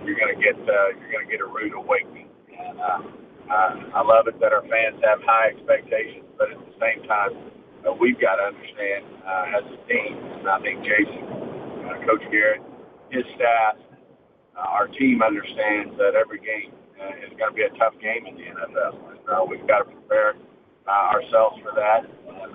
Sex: male